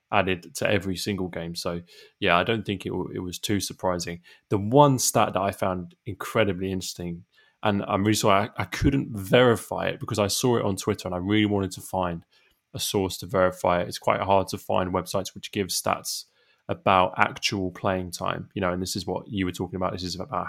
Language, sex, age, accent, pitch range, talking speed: English, male, 20-39, British, 90-105 Hz, 220 wpm